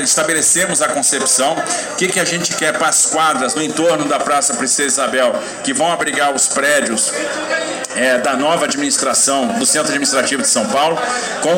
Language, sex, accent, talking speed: Portuguese, male, Brazilian, 175 wpm